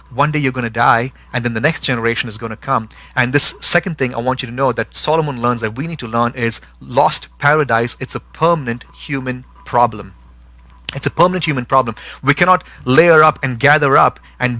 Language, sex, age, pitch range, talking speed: English, male, 30-49, 120-150 Hz, 220 wpm